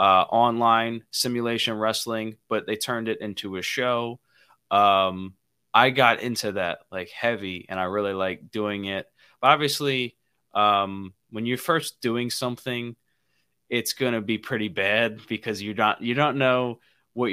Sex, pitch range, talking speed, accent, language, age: male, 100-120 Hz, 155 wpm, American, English, 20-39